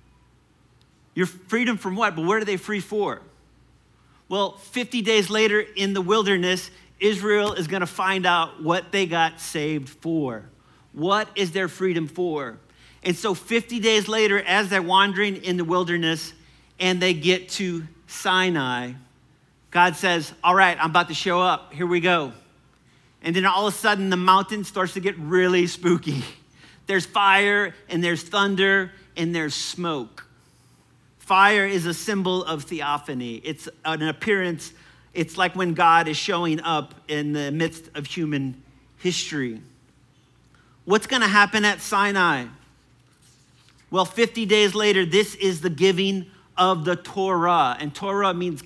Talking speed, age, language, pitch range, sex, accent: 150 wpm, 40-59, English, 160-195 Hz, male, American